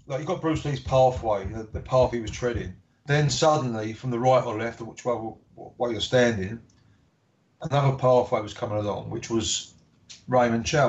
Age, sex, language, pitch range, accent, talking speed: 30-49, male, English, 110-130 Hz, British, 180 wpm